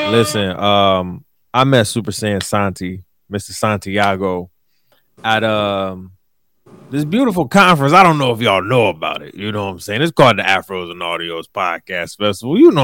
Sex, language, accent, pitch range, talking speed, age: male, English, American, 105-150 Hz, 175 wpm, 20-39